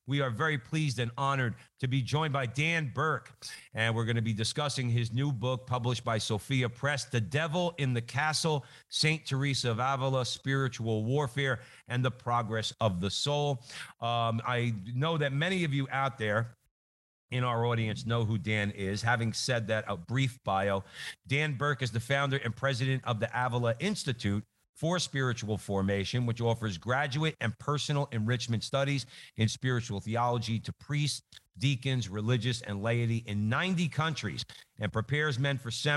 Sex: male